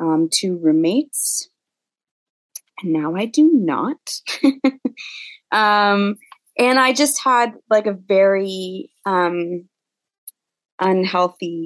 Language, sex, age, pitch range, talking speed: English, female, 20-39, 170-230 Hz, 95 wpm